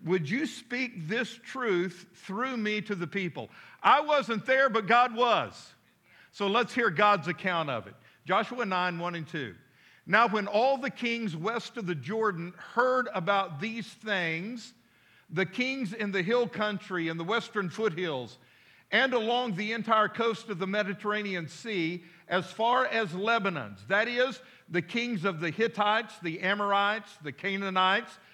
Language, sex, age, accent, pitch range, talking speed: English, male, 50-69, American, 180-230 Hz, 160 wpm